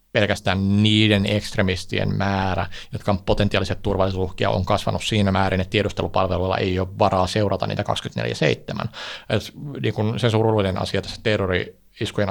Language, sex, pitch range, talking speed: Finnish, male, 95-110 Hz, 135 wpm